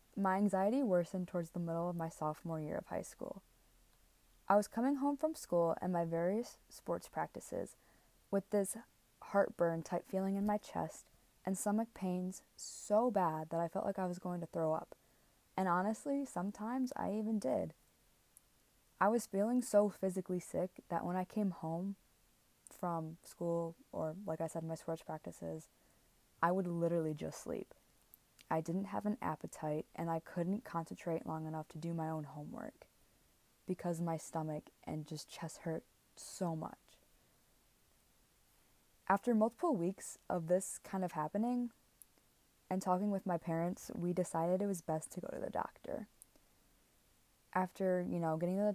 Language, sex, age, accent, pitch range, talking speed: English, female, 20-39, American, 165-200 Hz, 160 wpm